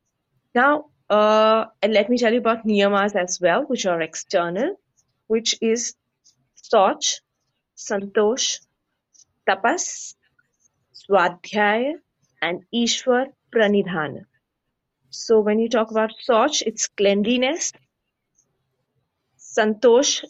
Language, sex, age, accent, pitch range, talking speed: English, female, 30-49, Indian, 185-235 Hz, 95 wpm